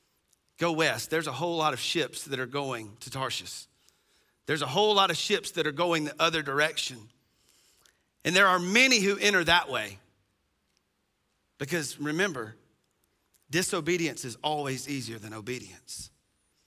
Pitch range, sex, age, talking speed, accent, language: 120-175 Hz, male, 40-59, 150 wpm, American, English